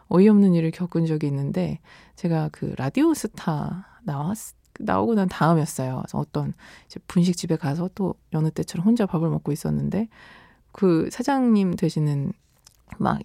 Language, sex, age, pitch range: Korean, female, 20-39, 160-225 Hz